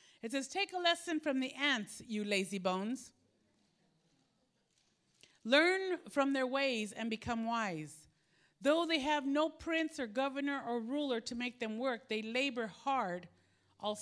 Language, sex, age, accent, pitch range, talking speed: English, female, 50-69, American, 195-265 Hz, 150 wpm